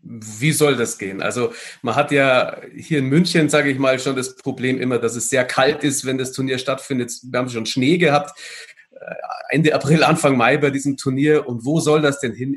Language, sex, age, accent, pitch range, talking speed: German, male, 40-59, German, 125-150 Hz, 215 wpm